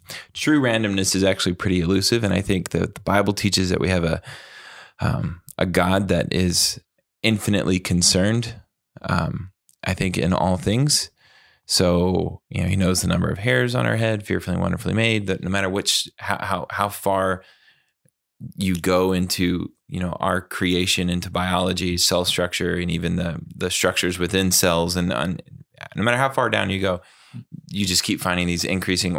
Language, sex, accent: English, male, American